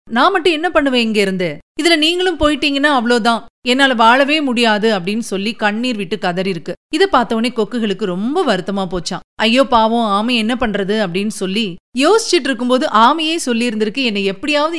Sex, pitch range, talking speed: female, 200-295 Hz, 155 wpm